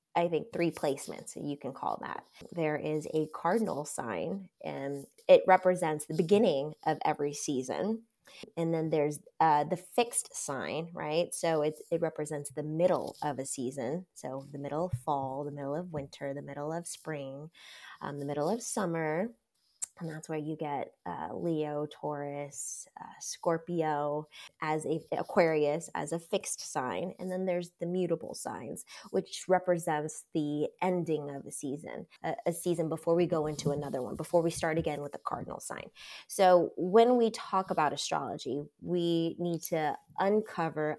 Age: 20-39